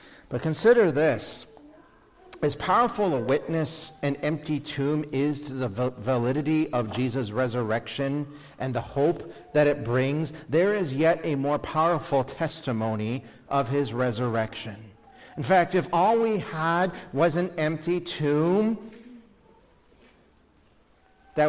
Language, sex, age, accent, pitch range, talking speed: English, male, 50-69, American, 145-190 Hz, 125 wpm